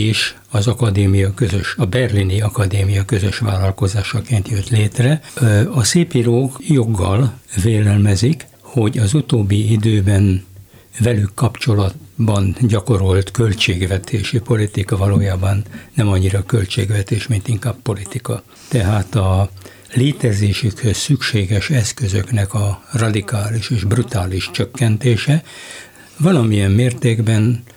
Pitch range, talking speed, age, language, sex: 100-120 Hz, 95 wpm, 60-79, Hungarian, male